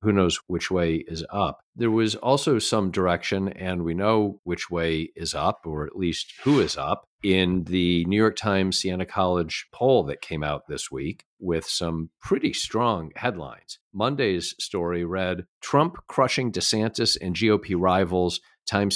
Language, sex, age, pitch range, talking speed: English, male, 50-69, 90-120 Hz, 160 wpm